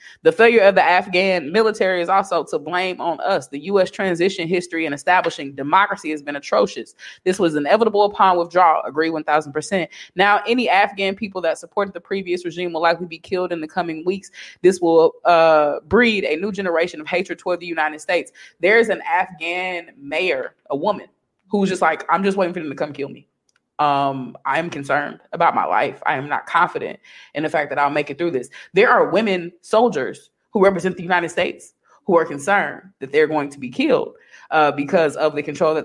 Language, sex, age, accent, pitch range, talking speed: English, female, 20-39, American, 160-195 Hz, 205 wpm